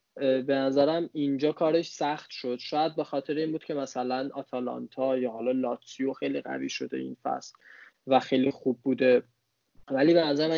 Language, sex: Persian, male